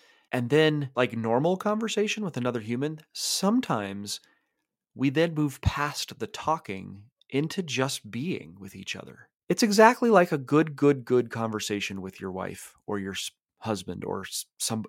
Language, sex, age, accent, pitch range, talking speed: English, male, 30-49, American, 105-160 Hz, 150 wpm